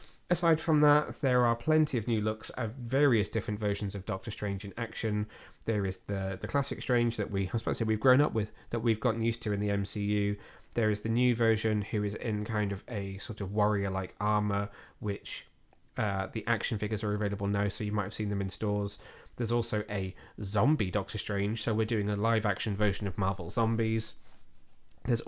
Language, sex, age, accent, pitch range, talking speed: English, male, 20-39, British, 100-115 Hz, 215 wpm